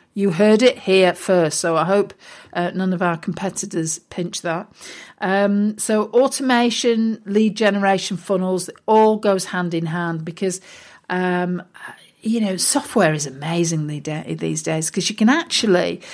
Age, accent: 50-69, British